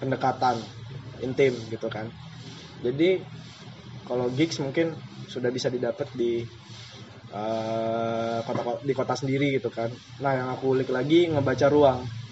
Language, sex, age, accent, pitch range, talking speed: Indonesian, male, 20-39, native, 125-145 Hz, 125 wpm